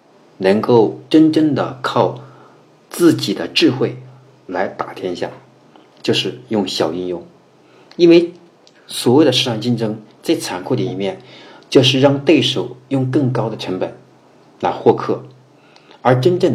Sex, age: male, 50-69